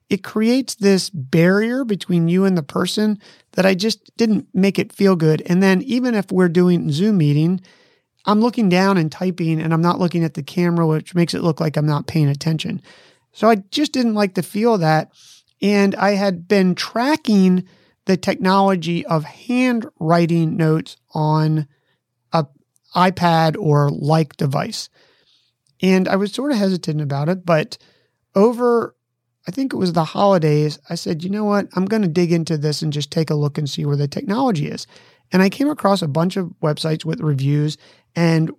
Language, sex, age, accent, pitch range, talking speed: English, male, 30-49, American, 155-195 Hz, 185 wpm